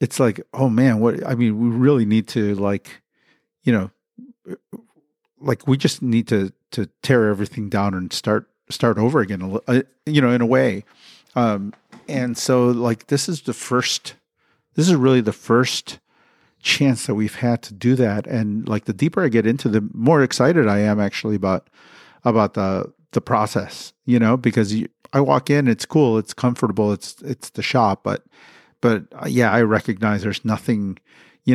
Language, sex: English, male